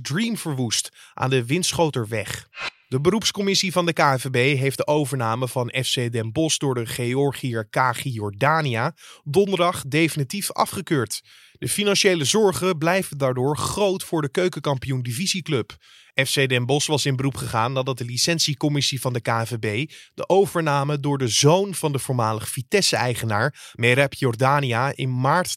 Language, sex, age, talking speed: Dutch, male, 20-39, 145 wpm